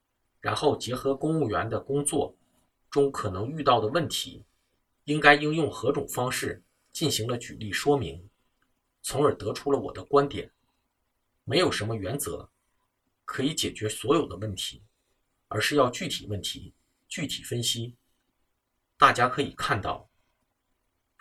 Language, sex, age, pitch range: Chinese, male, 50-69, 110-145 Hz